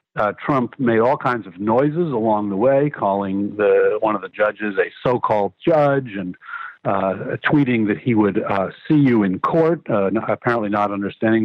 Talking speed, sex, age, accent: 180 wpm, male, 60-79, American